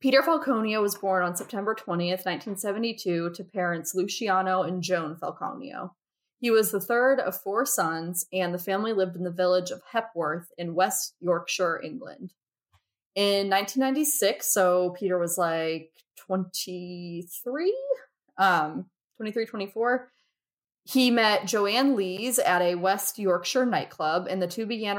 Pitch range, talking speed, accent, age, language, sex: 175-210 Hz, 135 wpm, American, 20-39, English, female